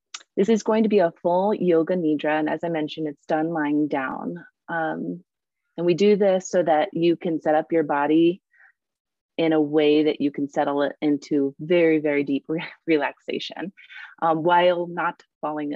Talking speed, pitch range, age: 180 wpm, 150-185 Hz, 30-49